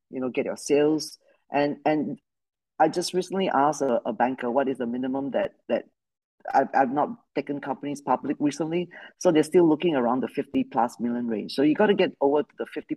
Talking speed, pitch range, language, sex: 215 wpm, 140-190 Hz, English, male